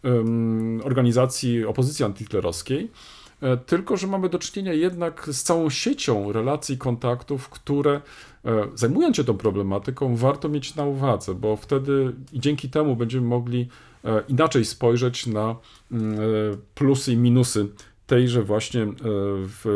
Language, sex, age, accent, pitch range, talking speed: Polish, male, 40-59, native, 115-150 Hz, 115 wpm